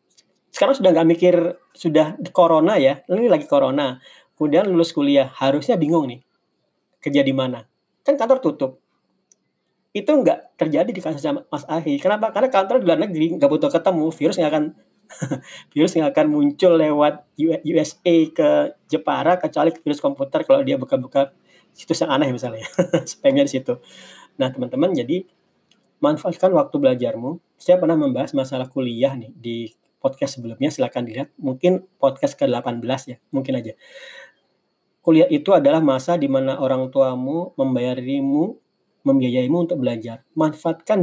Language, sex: Indonesian, male